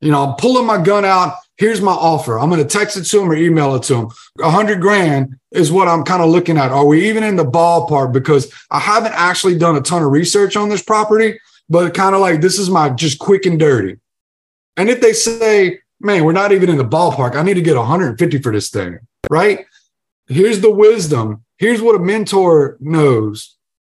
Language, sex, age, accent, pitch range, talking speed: English, male, 30-49, American, 150-200 Hz, 225 wpm